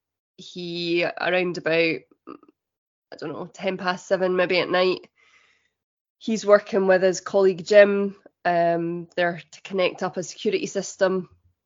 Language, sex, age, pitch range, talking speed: English, female, 20-39, 180-195 Hz, 135 wpm